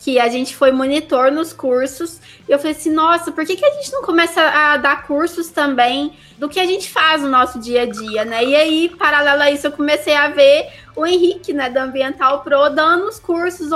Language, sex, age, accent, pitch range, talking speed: Portuguese, female, 20-39, Brazilian, 265-315 Hz, 225 wpm